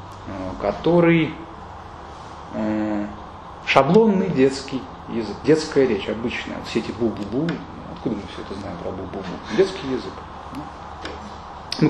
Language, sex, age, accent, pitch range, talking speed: Russian, male, 20-39, native, 95-155 Hz, 105 wpm